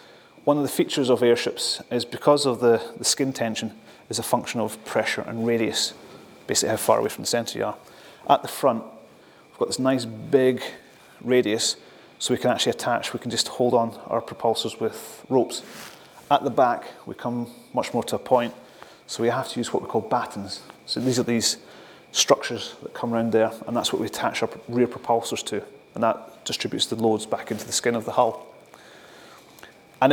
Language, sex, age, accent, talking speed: English, male, 30-49, British, 205 wpm